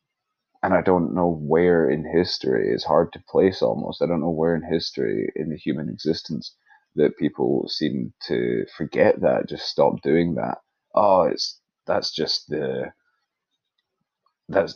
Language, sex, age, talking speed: English, male, 20-39, 155 wpm